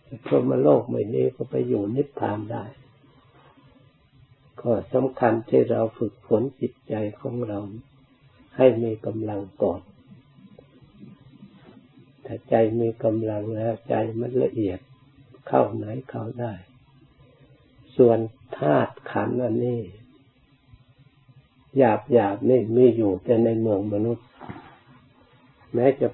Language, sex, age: Thai, male, 60-79